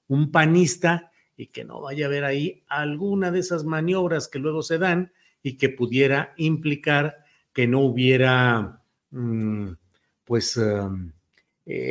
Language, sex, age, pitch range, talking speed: Spanish, male, 50-69, 130-160 Hz, 130 wpm